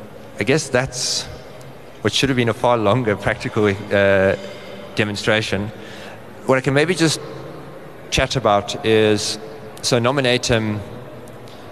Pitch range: 100-120 Hz